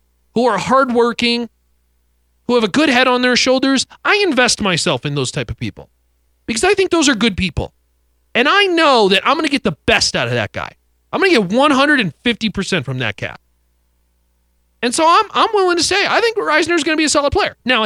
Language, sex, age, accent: English, male, 40-59, American